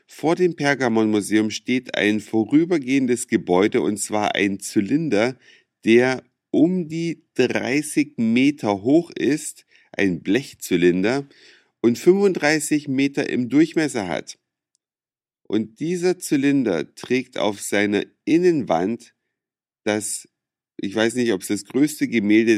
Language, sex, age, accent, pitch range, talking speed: German, male, 50-69, German, 110-155 Hz, 110 wpm